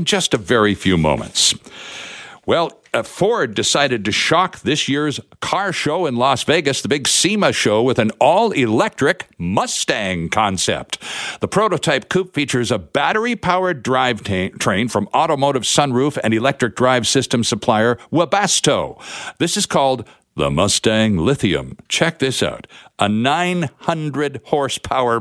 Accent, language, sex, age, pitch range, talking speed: American, English, male, 60-79, 115-160 Hz, 130 wpm